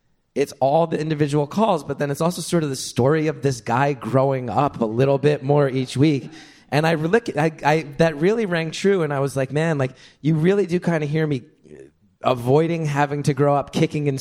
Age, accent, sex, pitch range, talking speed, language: 30-49, American, male, 120-155 Hz, 220 wpm, English